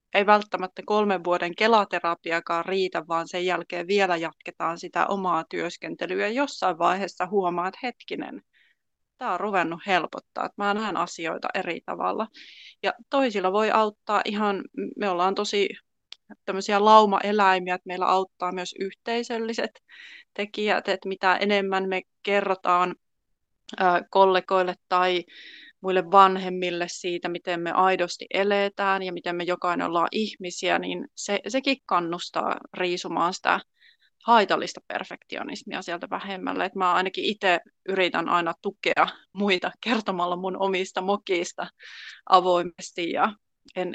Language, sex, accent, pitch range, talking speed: Finnish, female, native, 180-205 Hz, 115 wpm